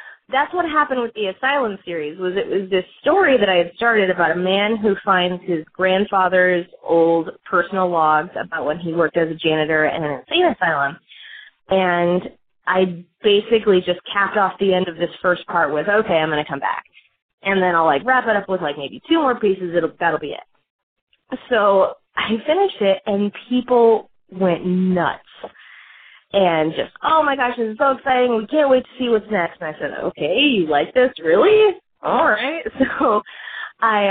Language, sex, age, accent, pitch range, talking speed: English, female, 20-39, American, 175-245 Hz, 190 wpm